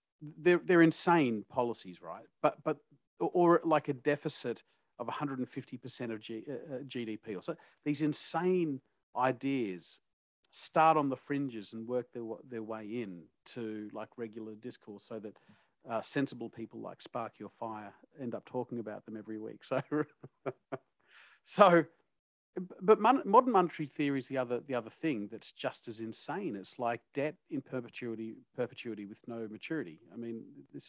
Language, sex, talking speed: English, male, 165 wpm